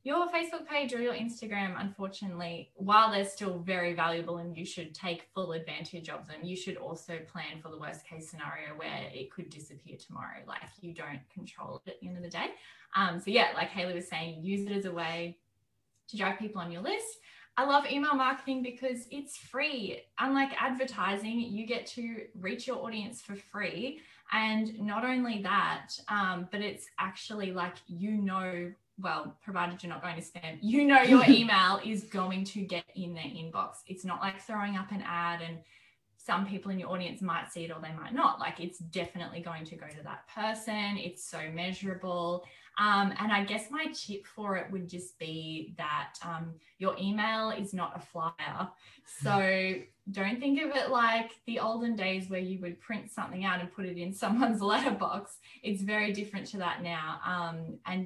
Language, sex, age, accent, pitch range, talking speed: English, female, 10-29, Australian, 170-215 Hz, 195 wpm